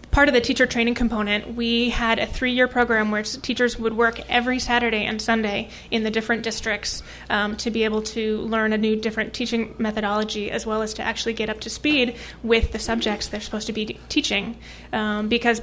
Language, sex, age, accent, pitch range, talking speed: English, female, 20-39, American, 215-235 Hz, 205 wpm